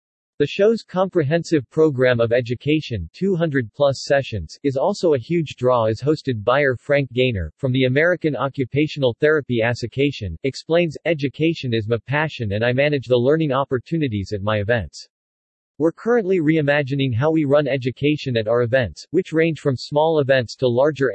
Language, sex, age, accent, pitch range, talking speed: English, male, 40-59, American, 120-150 Hz, 160 wpm